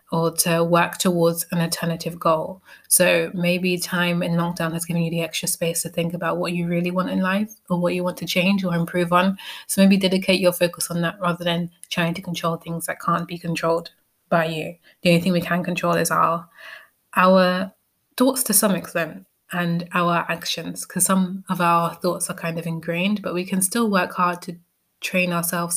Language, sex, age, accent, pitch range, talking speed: English, female, 20-39, British, 170-185 Hz, 205 wpm